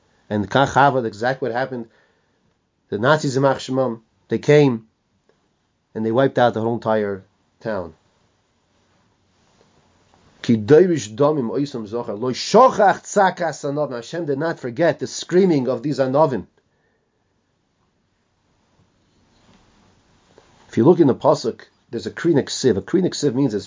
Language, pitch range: English, 115-155 Hz